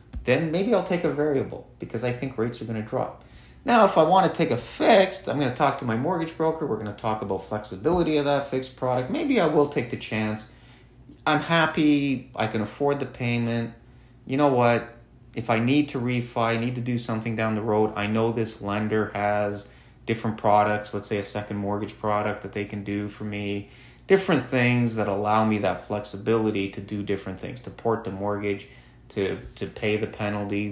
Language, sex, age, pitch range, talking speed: English, male, 30-49, 100-125 Hz, 205 wpm